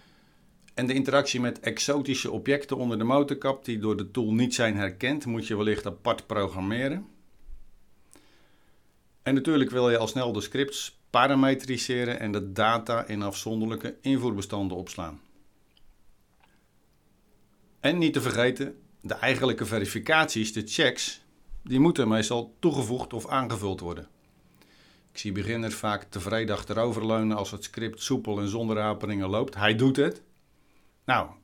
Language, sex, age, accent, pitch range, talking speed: Dutch, male, 50-69, Dutch, 105-130 Hz, 135 wpm